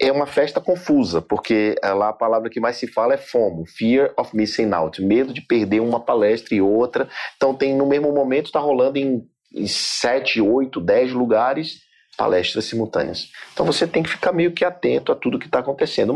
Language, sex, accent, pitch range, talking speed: Portuguese, male, Brazilian, 90-135 Hz, 195 wpm